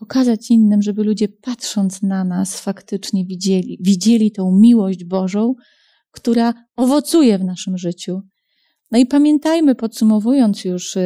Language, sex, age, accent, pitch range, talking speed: Polish, female, 30-49, native, 190-230 Hz, 125 wpm